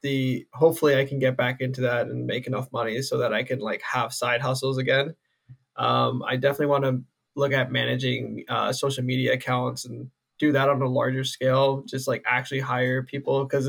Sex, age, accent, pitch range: male, 20-39, American, 130-145 Hz